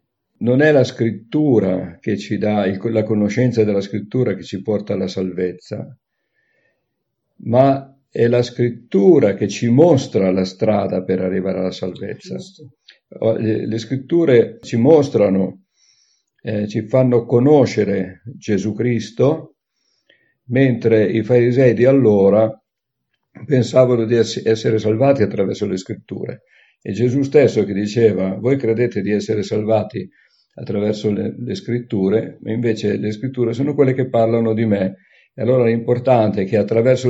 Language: Italian